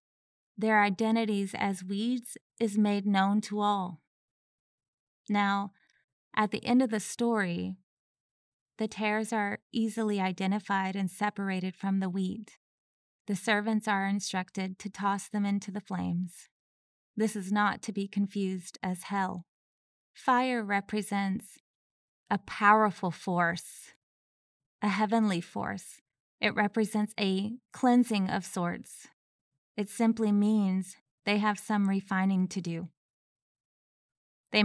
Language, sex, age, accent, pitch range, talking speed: English, female, 20-39, American, 190-215 Hz, 120 wpm